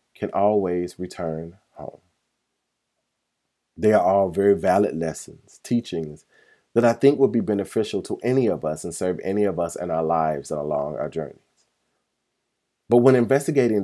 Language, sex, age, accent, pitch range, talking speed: English, male, 30-49, American, 90-110 Hz, 155 wpm